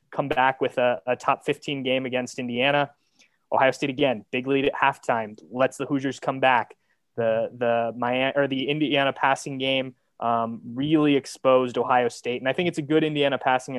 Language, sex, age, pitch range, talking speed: English, male, 20-39, 125-140 Hz, 185 wpm